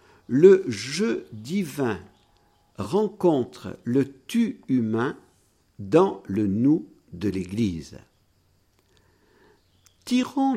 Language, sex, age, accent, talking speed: French, male, 60-79, French, 100 wpm